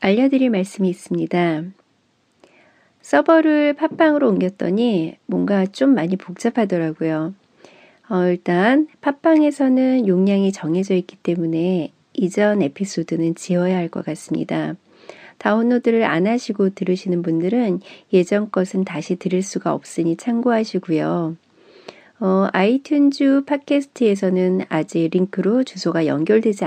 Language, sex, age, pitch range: Korean, female, 40-59, 175-250 Hz